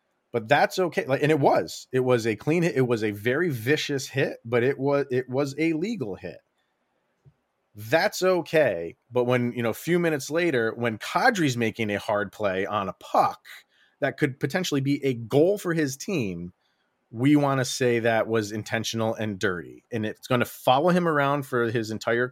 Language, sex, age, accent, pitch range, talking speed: English, male, 30-49, American, 115-150 Hz, 195 wpm